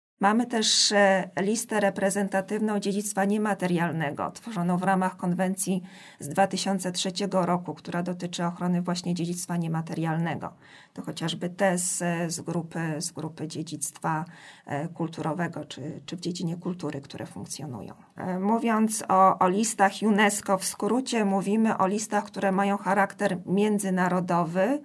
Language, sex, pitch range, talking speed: Polish, female, 175-205 Hz, 115 wpm